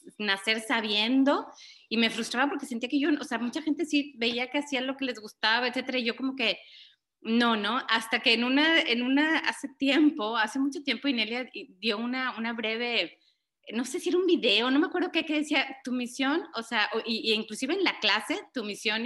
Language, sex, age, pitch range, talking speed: Spanish, female, 30-49, 220-280 Hz, 215 wpm